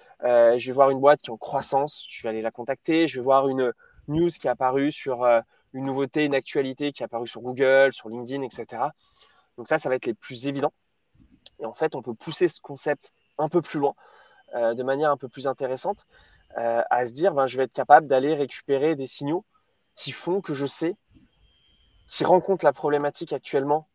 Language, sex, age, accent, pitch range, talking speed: French, male, 20-39, French, 130-160 Hz, 220 wpm